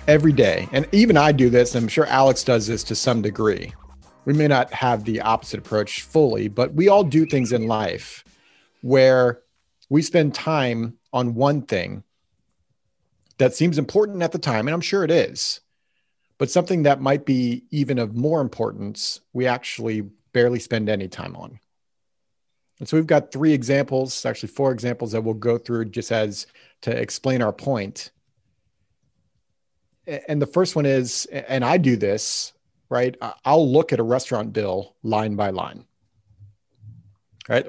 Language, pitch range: English, 110-145 Hz